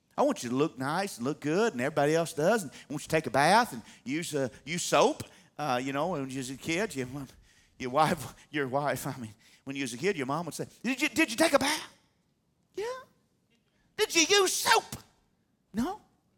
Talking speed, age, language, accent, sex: 230 wpm, 50-69, English, American, male